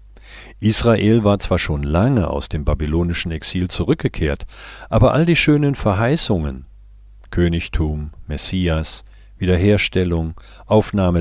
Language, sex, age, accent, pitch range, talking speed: German, male, 50-69, German, 80-105 Hz, 100 wpm